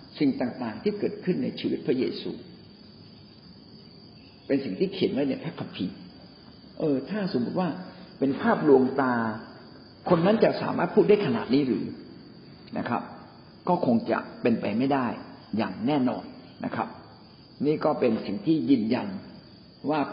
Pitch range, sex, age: 135-205 Hz, male, 50-69